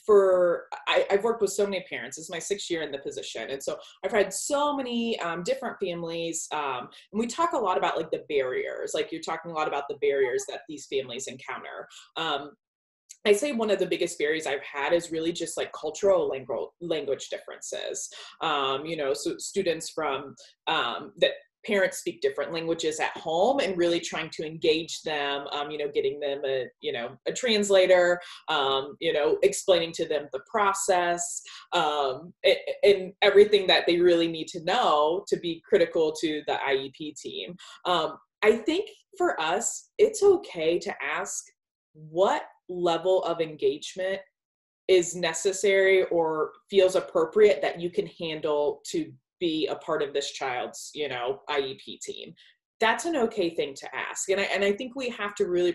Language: English